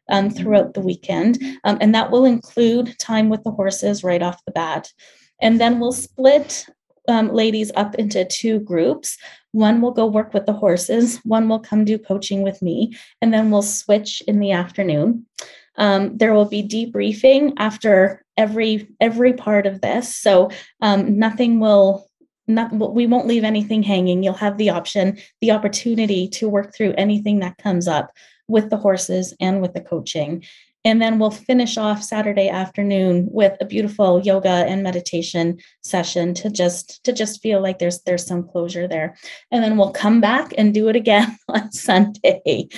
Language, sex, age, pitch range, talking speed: English, female, 20-39, 190-225 Hz, 175 wpm